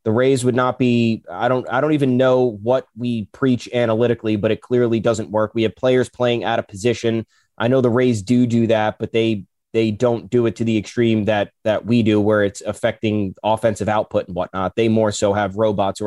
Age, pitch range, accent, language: 20-39, 110-125 Hz, American, English